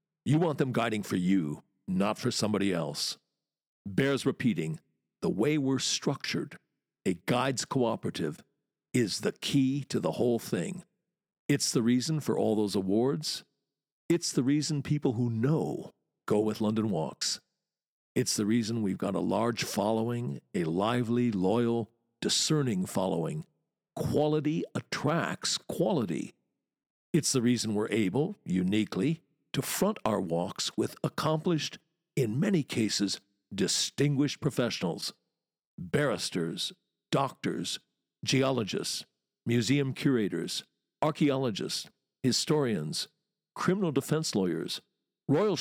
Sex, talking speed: male, 115 wpm